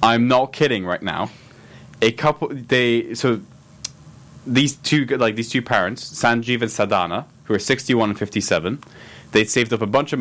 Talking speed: 170 wpm